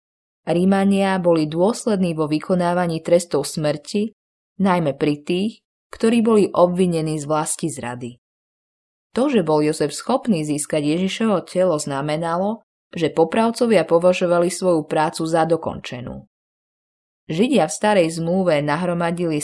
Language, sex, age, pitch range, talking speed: Slovak, female, 20-39, 150-190 Hz, 115 wpm